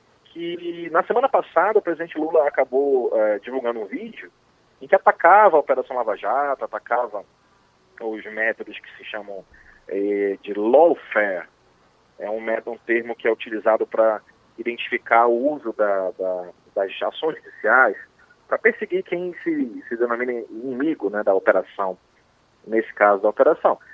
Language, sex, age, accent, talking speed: Portuguese, male, 30-49, Brazilian, 150 wpm